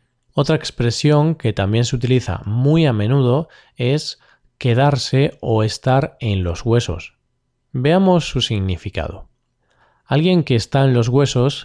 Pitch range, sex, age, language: 115-150 Hz, male, 20-39, Spanish